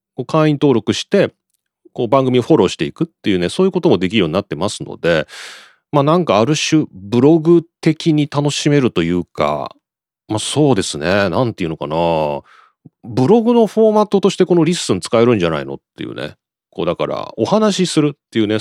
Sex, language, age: male, Japanese, 40-59